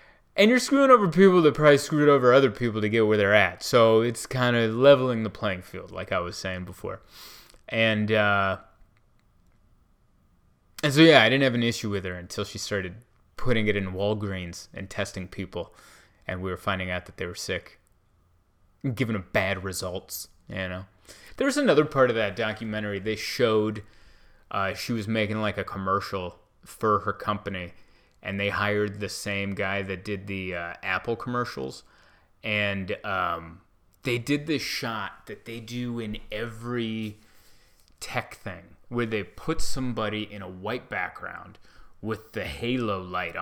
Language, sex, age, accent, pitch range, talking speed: English, male, 20-39, American, 95-120 Hz, 170 wpm